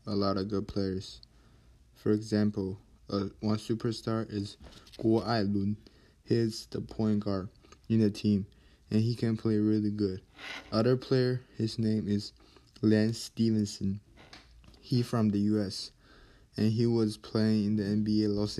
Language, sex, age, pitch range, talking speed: English, male, 20-39, 105-115 Hz, 145 wpm